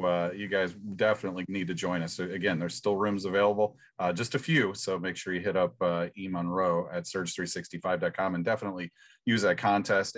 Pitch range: 95-125 Hz